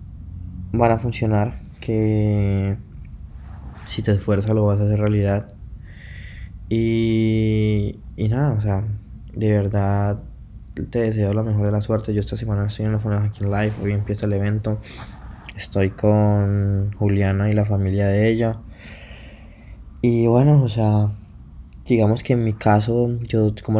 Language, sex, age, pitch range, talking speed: Spanish, male, 20-39, 100-110 Hz, 150 wpm